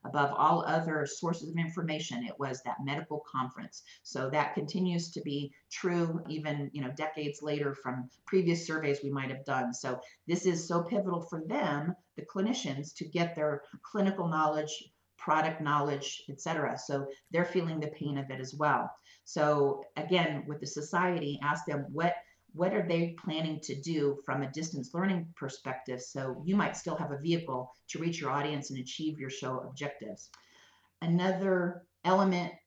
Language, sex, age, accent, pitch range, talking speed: English, female, 40-59, American, 145-175 Hz, 170 wpm